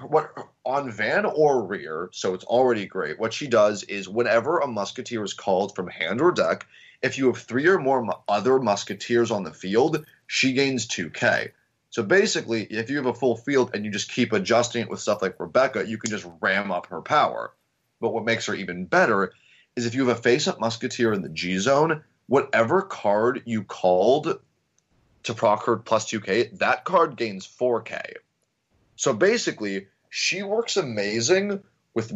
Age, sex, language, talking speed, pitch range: 30-49, male, English, 180 wpm, 105-135 Hz